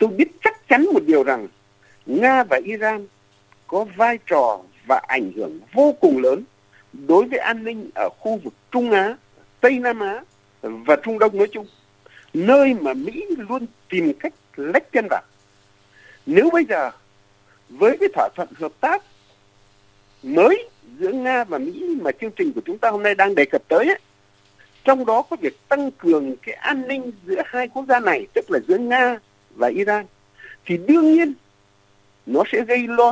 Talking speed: 180 wpm